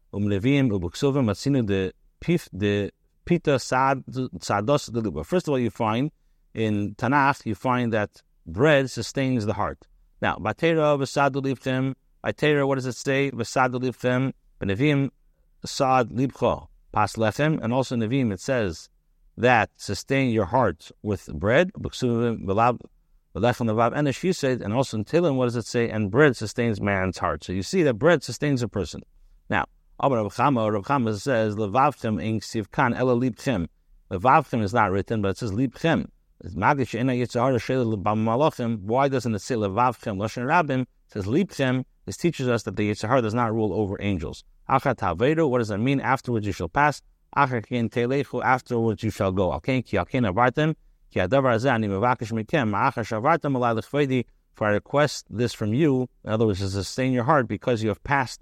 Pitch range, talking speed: 110-135 Hz, 115 wpm